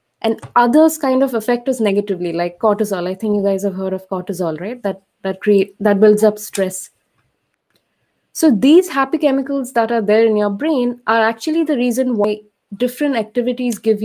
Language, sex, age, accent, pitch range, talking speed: English, female, 20-39, Indian, 200-250 Hz, 185 wpm